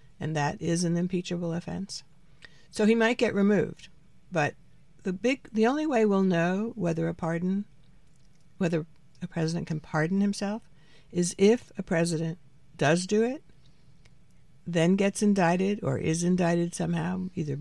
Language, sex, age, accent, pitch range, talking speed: English, female, 60-79, American, 150-190 Hz, 145 wpm